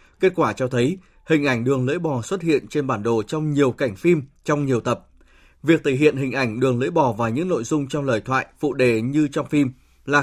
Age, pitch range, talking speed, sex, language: 20-39, 125-160 Hz, 245 wpm, male, Vietnamese